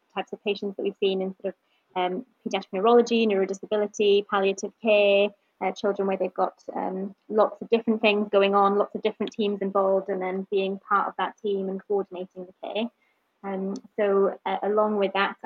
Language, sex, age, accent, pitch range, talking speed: English, female, 20-39, British, 195-220 Hz, 190 wpm